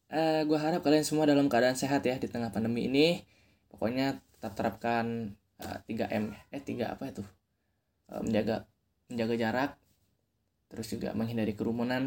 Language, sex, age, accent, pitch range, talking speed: Indonesian, male, 10-29, native, 105-140 Hz, 150 wpm